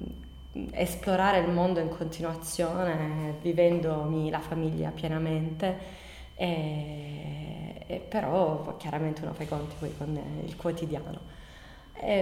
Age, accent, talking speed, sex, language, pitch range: 20-39, native, 90 wpm, female, Italian, 155-180 Hz